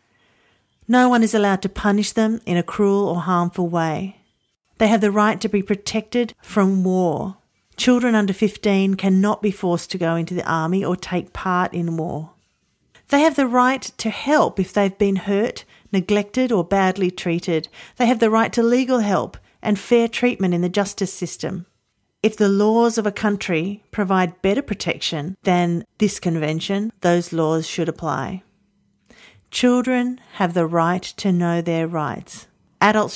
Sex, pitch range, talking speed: female, 175-215 Hz, 165 wpm